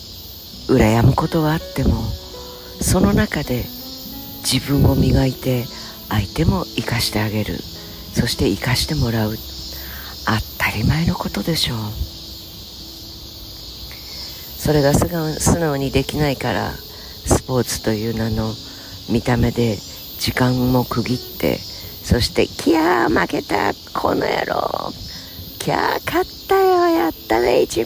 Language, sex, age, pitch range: Japanese, female, 50-69, 85-130 Hz